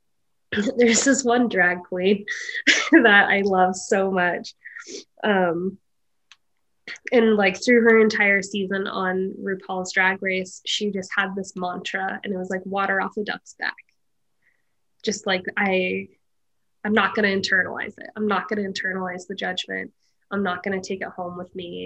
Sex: female